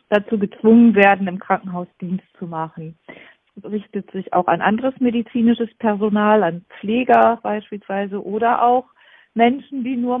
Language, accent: German, German